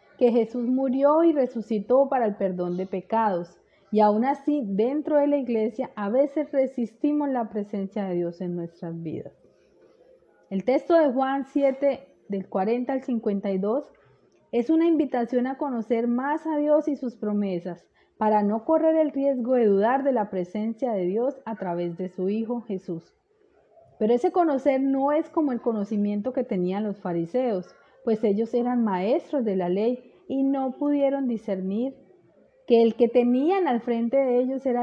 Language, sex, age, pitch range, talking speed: Spanish, female, 30-49, 200-275 Hz, 165 wpm